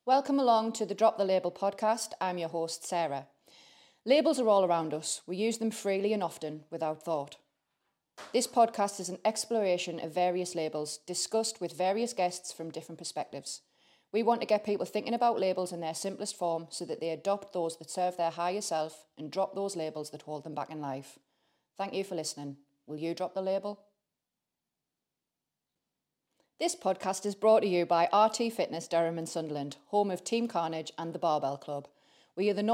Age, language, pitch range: 30-49, English, 160-205 Hz